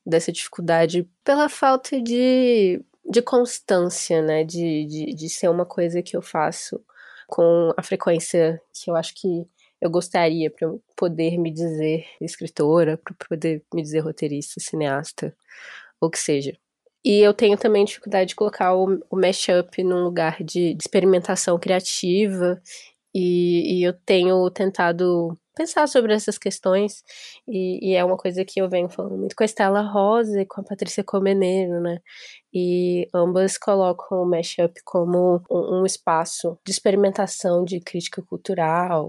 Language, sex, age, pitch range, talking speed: Portuguese, female, 20-39, 170-205 Hz, 155 wpm